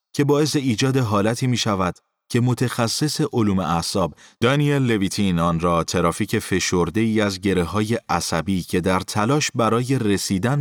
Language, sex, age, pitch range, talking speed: Persian, male, 30-49, 90-115 Hz, 130 wpm